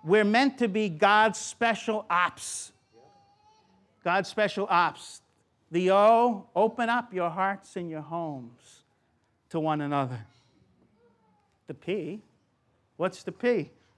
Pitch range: 170-225 Hz